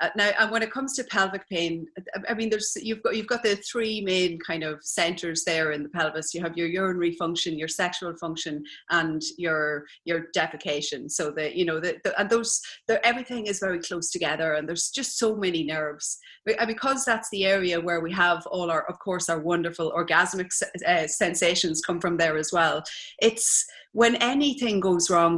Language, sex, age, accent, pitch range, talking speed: English, female, 30-49, Irish, 165-205 Hz, 190 wpm